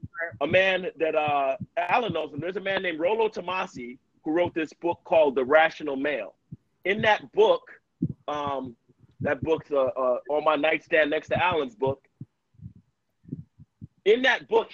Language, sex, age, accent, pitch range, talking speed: English, male, 40-59, American, 150-215 Hz, 160 wpm